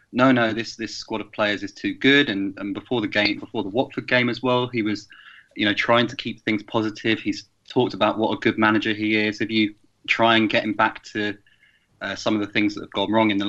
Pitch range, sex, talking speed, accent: 100-110 Hz, male, 260 wpm, British